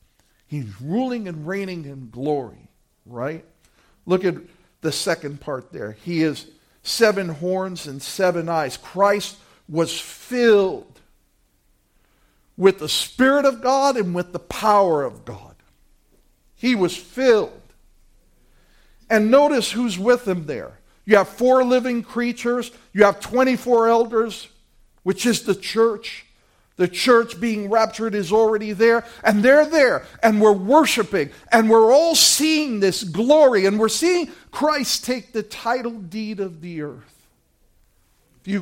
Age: 60-79